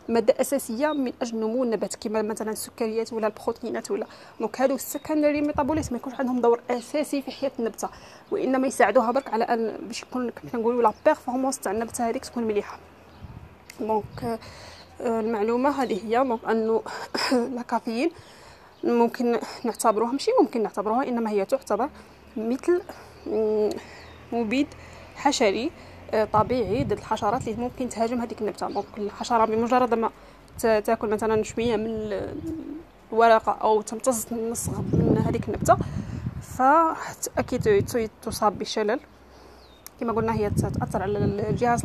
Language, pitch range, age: Arabic, 220-260 Hz, 20-39